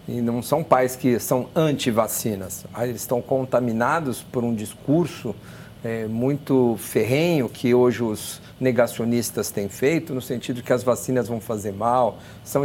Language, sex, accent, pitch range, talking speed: Portuguese, male, Brazilian, 115-145 Hz, 140 wpm